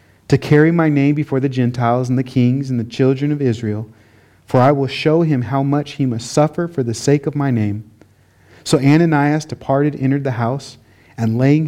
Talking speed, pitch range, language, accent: 200 wpm, 115-155 Hz, English, American